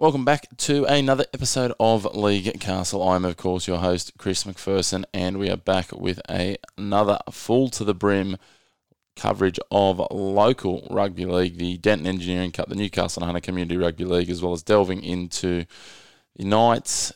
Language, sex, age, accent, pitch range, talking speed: English, male, 20-39, Australian, 90-105 Hz, 170 wpm